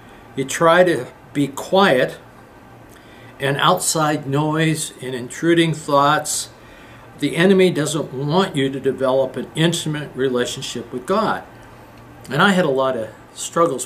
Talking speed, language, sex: 130 wpm, English, male